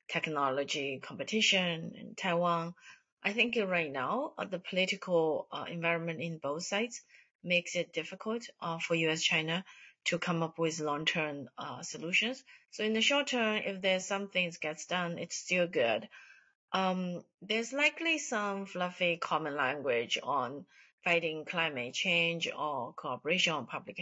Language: English